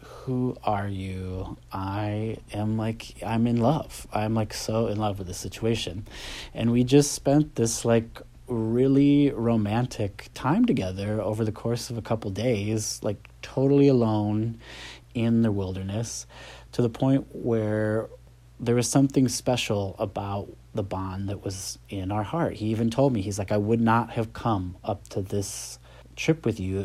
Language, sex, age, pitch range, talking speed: English, male, 30-49, 100-125 Hz, 165 wpm